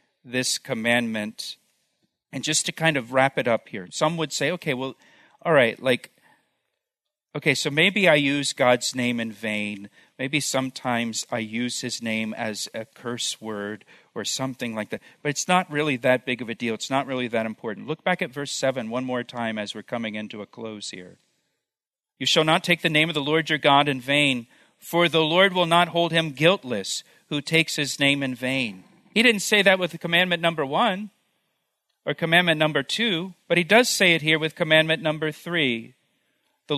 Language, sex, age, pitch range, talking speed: English, male, 50-69, 130-180 Hz, 200 wpm